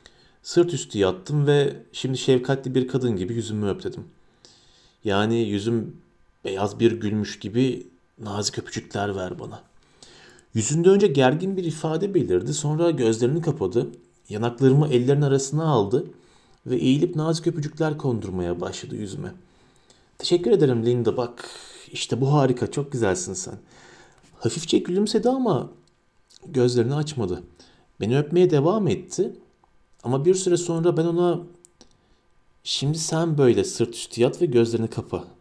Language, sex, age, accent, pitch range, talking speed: Turkish, male, 40-59, native, 115-160 Hz, 130 wpm